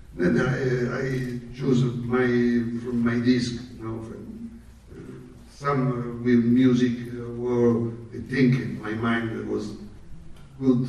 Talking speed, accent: 125 wpm, Italian